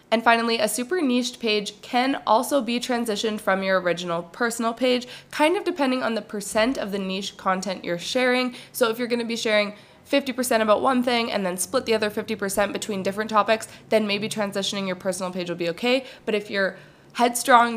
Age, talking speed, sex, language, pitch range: 20-39, 205 wpm, female, English, 195-245 Hz